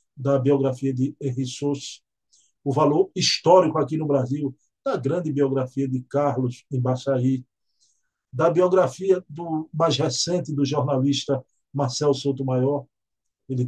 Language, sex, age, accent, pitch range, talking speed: Portuguese, male, 50-69, Brazilian, 130-155 Hz, 125 wpm